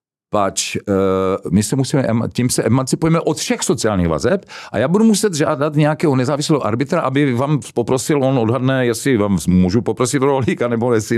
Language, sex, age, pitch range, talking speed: Czech, male, 50-69, 100-145 Hz, 170 wpm